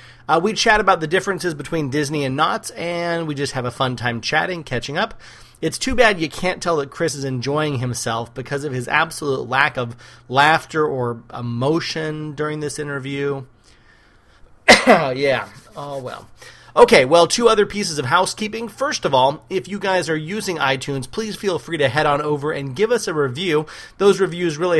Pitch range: 125-175 Hz